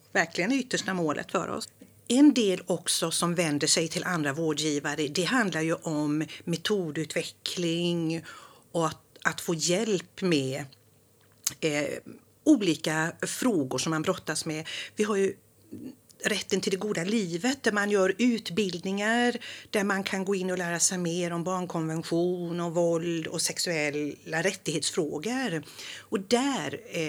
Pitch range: 160-205 Hz